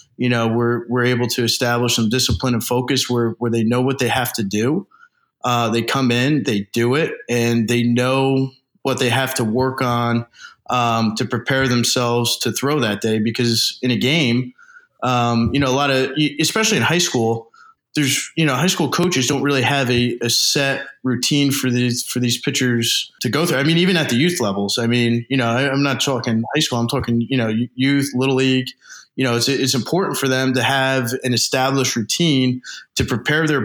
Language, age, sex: English, 20-39, male